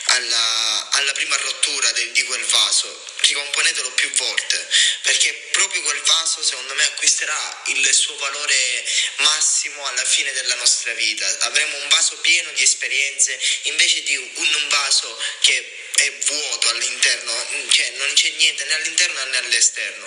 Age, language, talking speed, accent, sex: 20-39, Italian, 150 wpm, native, male